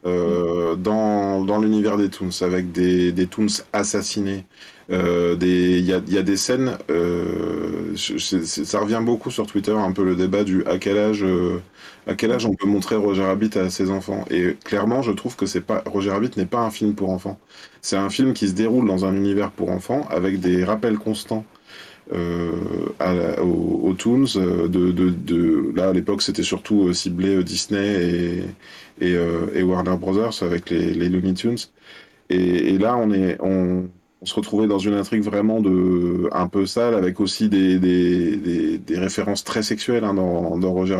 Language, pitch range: French, 90-105 Hz